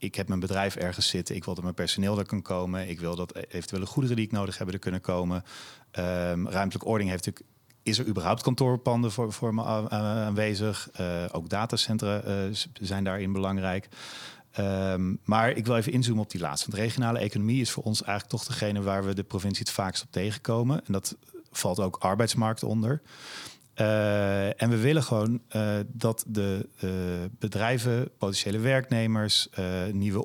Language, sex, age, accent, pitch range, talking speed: Dutch, male, 40-59, Dutch, 95-120 Hz, 175 wpm